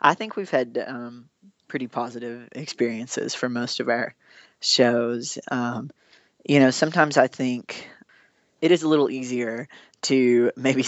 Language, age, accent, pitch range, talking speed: English, 20-39, American, 120-140 Hz, 145 wpm